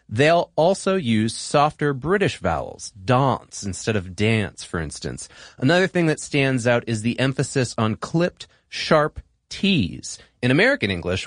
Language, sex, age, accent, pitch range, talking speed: English, male, 30-49, American, 105-165 Hz, 145 wpm